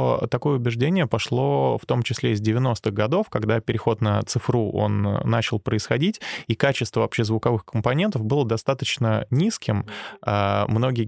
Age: 20-39